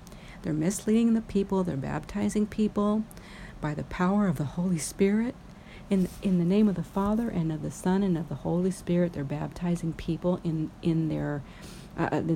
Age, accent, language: 50-69, American, English